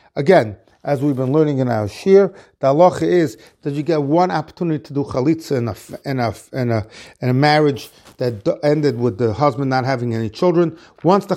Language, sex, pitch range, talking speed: English, male, 135-175 Hz, 210 wpm